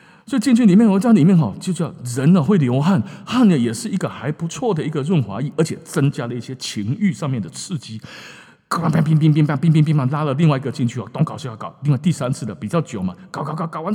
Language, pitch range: Chinese, 135-210 Hz